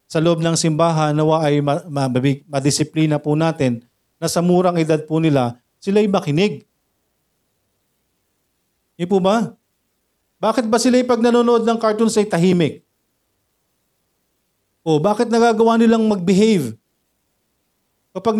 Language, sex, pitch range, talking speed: Filipino, male, 130-205 Hz, 110 wpm